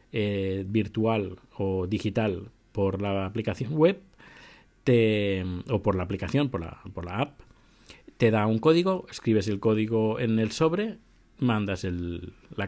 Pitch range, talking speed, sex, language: 100-125 Hz, 145 wpm, male, Spanish